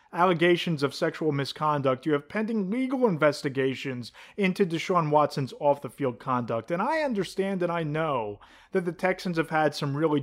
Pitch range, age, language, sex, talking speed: 150-200 Hz, 30-49, English, male, 160 wpm